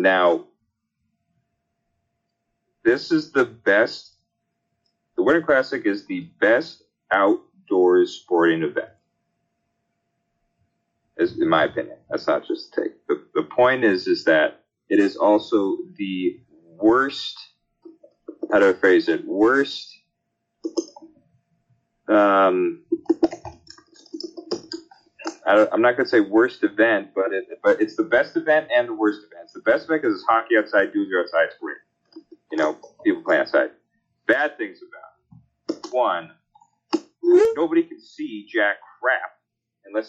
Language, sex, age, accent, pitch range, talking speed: English, male, 30-49, American, 310-355 Hz, 130 wpm